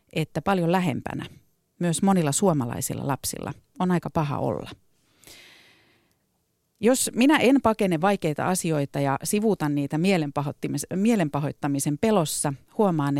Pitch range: 140-180 Hz